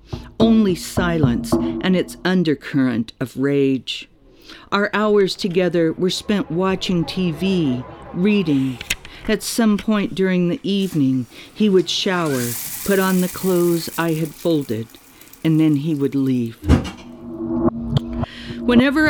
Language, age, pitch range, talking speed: English, 50-69, 125-195 Hz, 115 wpm